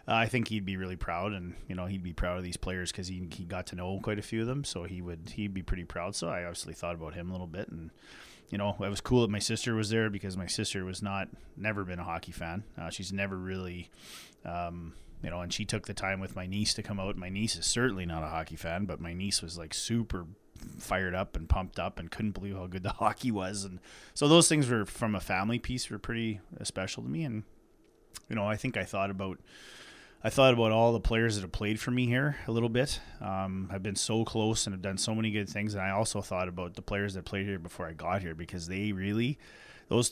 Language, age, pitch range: English, 30-49, 90-110 Hz